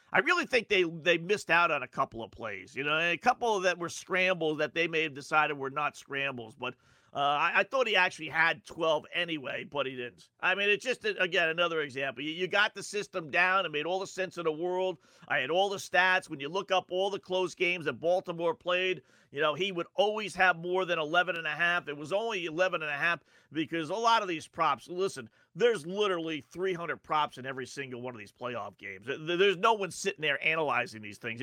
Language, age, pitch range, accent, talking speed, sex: English, 40-59, 140-195 Hz, American, 230 wpm, male